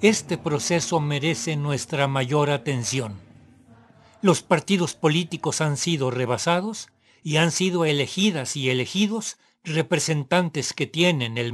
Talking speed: 115 wpm